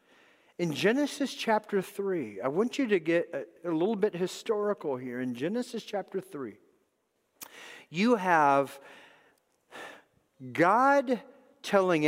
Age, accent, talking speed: 50-69, American, 115 wpm